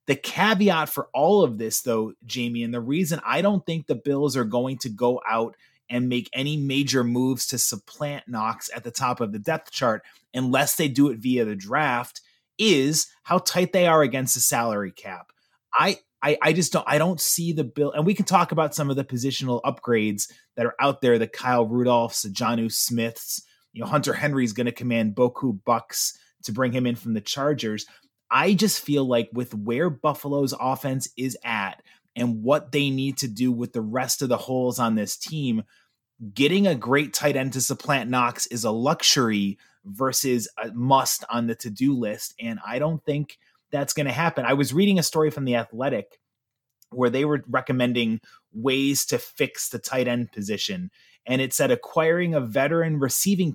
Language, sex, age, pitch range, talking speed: English, male, 30-49, 120-145 Hz, 195 wpm